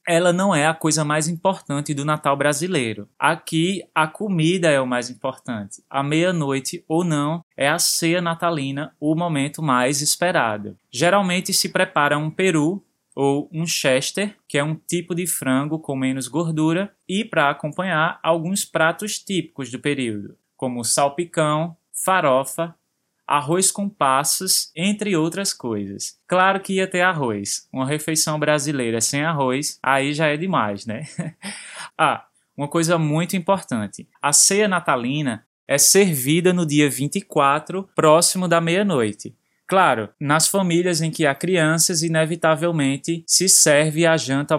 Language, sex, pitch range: Portuguese, male, 140-175 Hz